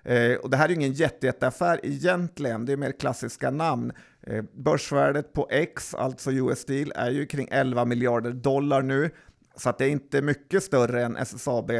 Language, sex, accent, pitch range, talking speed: Swedish, male, native, 125-150 Hz, 195 wpm